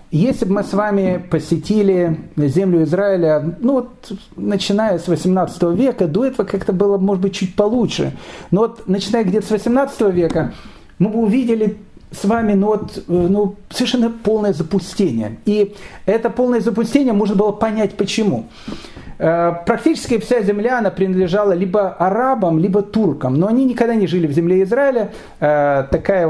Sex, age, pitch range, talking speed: male, 40-59, 170-220 Hz, 150 wpm